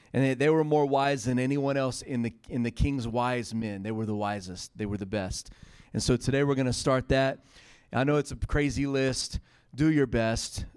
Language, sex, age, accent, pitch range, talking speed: English, male, 30-49, American, 115-135 Hz, 225 wpm